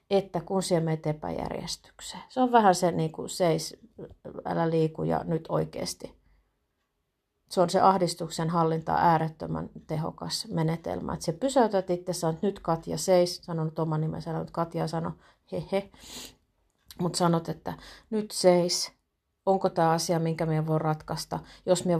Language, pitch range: Finnish, 160-180 Hz